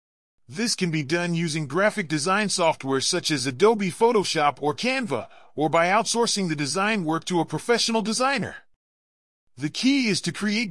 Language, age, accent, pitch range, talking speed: English, 40-59, American, 150-220 Hz, 160 wpm